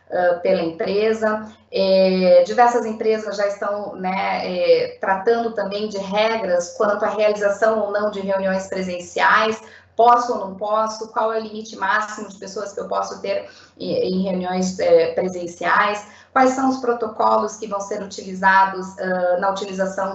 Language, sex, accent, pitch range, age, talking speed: Portuguese, female, Brazilian, 195-235 Hz, 10-29, 140 wpm